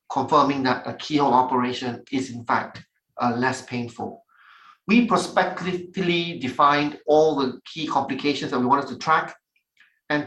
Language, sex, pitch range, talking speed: English, male, 130-160 Hz, 140 wpm